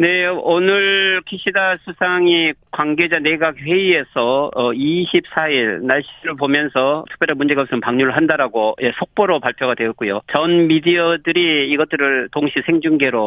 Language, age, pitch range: Korean, 40-59, 135-175 Hz